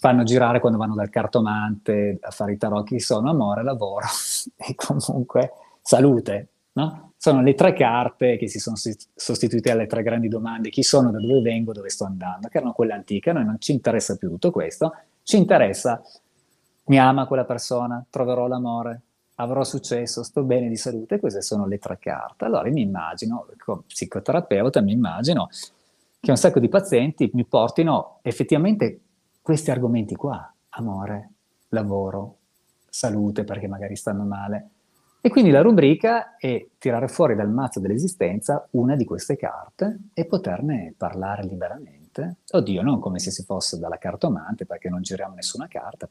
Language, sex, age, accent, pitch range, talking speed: Italian, male, 30-49, native, 100-130 Hz, 165 wpm